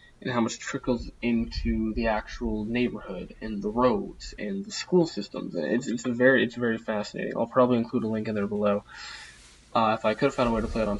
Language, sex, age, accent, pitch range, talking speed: English, male, 20-39, American, 110-130 Hz, 230 wpm